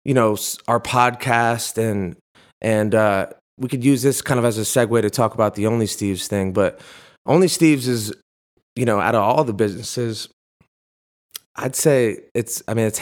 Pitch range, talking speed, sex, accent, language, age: 105-125 Hz, 185 wpm, male, American, English, 30-49